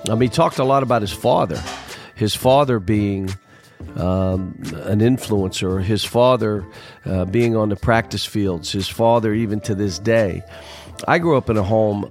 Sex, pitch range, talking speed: male, 105-130 Hz, 175 wpm